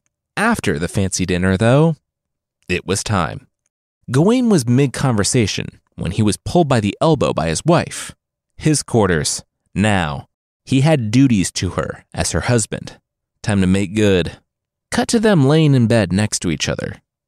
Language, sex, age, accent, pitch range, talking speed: English, male, 30-49, American, 95-145 Hz, 160 wpm